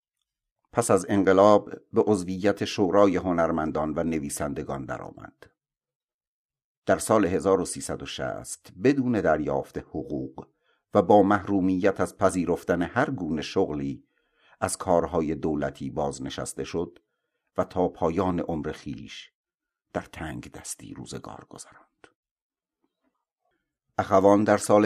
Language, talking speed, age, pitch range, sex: Persian, 105 wpm, 50-69, 80-100 Hz, male